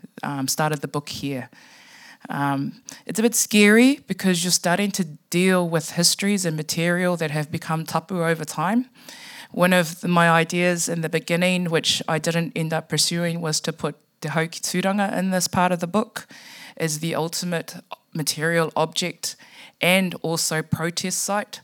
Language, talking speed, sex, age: English, 165 wpm, female, 20-39